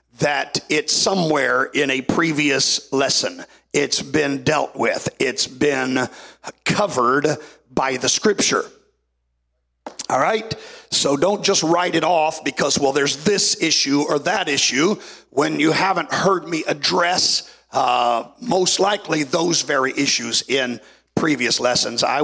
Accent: American